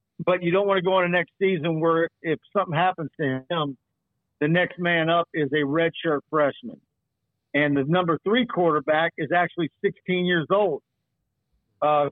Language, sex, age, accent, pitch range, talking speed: English, male, 50-69, American, 150-175 Hz, 175 wpm